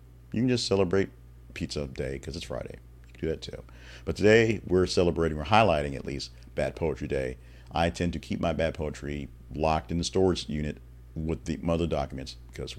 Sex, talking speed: male, 195 wpm